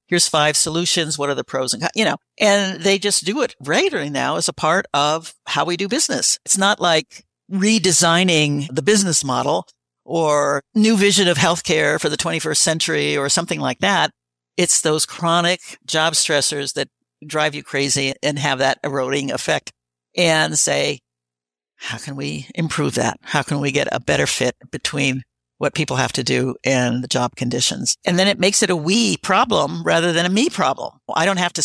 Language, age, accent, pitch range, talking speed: English, 60-79, American, 140-180 Hz, 190 wpm